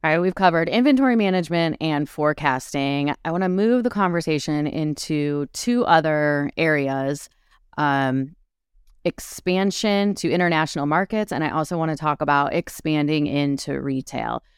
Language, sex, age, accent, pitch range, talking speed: English, female, 30-49, American, 140-170 Hz, 135 wpm